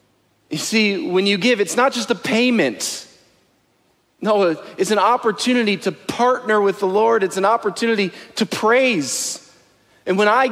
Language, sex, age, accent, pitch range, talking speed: English, male, 40-59, American, 170-230 Hz, 155 wpm